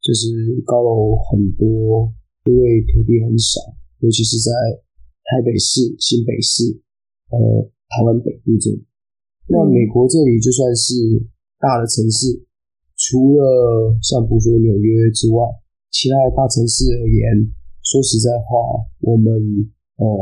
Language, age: Chinese, 20-39